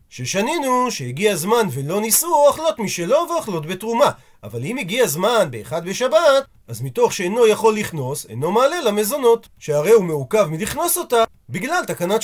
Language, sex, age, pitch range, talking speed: Hebrew, male, 40-59, 180-235 Hz, 150 wpm